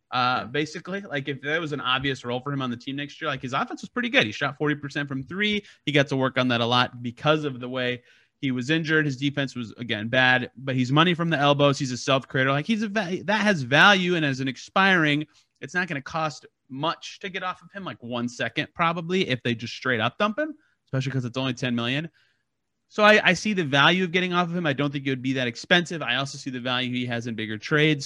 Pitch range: 125-175 Hz